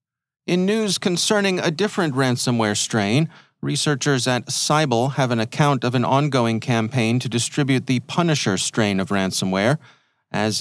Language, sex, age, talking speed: English, male, 40-59, 140 wpm